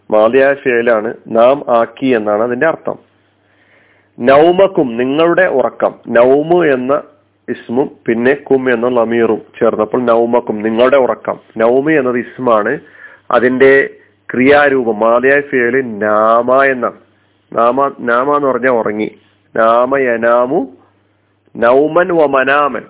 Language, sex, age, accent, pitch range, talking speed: Malayalam, male, 40-59, native, 115-145 Hz, 95 wpm